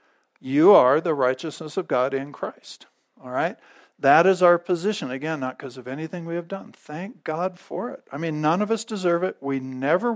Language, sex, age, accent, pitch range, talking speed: English, male, 50-69, American, 145-185 Hz, 205 wpm